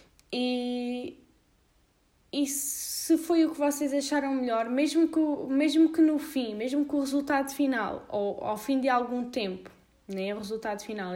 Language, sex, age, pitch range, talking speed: Portuguese, female, 10-29, 210-260 Hz, 160 wpm